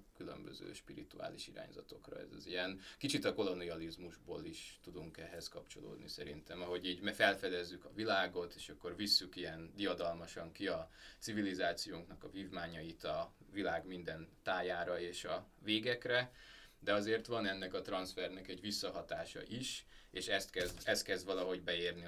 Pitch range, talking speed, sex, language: 90-100 Hz, 140 wpm, male, Hungarian